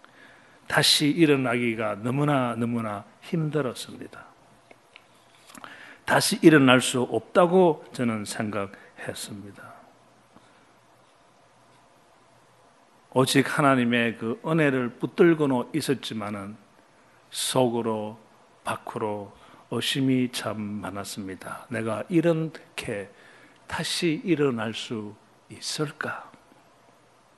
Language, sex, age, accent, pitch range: Korean, male, 40-59, native, 110-140 Hz